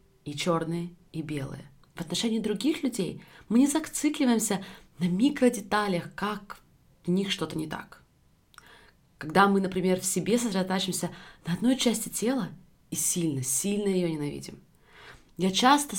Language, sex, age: Russian, female, 20-39